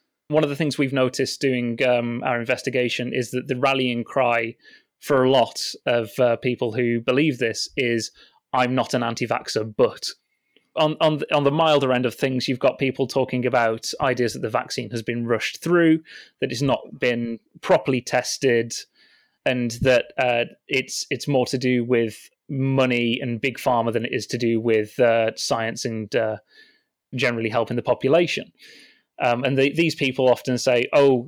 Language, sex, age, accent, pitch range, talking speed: English, male, 30-49, British, 115-135 Hz, 175 wpm